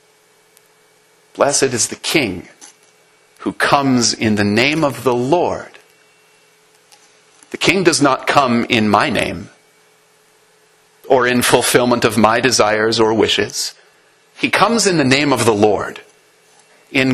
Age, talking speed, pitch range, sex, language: 40-59, 130 wpm, 120-170 Hz, male, English